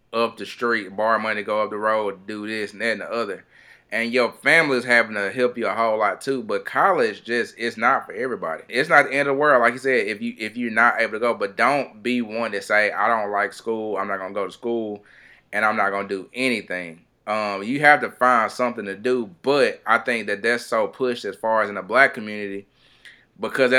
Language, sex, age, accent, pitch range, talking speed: English, male, 20-39, American, 105-130 Hz, 250 wpm